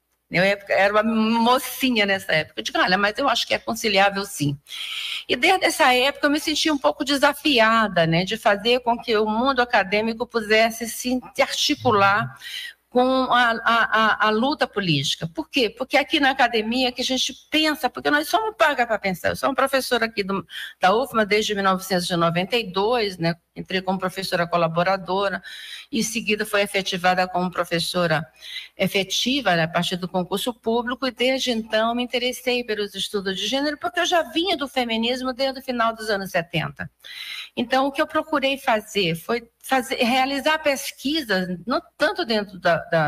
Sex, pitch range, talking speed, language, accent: female, 190-255 Hz, 175 wpm, Portuguese, Brazilian